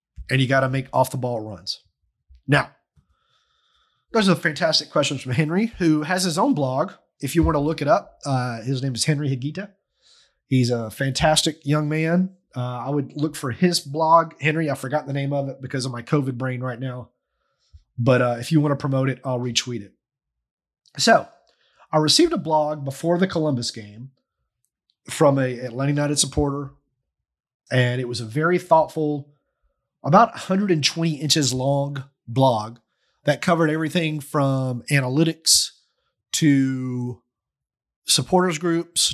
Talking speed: 160 wpm